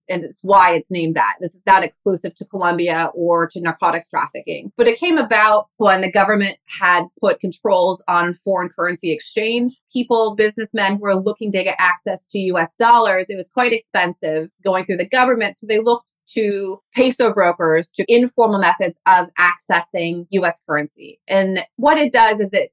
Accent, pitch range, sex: American, 175-220 Hz, female